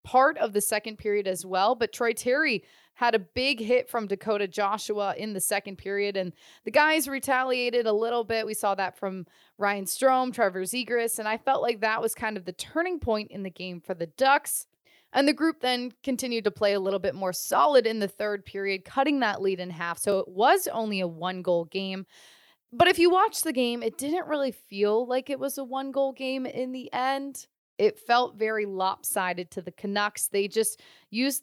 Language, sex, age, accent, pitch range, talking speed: English, female, 20-39, American, 195-255 Hz, 215 wpm